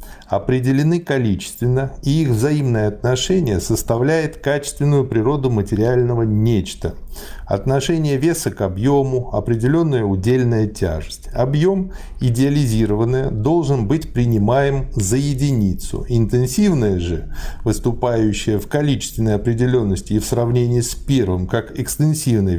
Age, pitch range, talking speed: 50-69, 105-140 Hz, 100 wpm